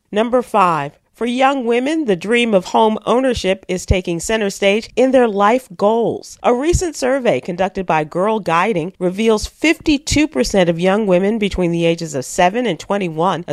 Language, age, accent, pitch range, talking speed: English, 40-59, American, 180-240 Hz, 165 wpm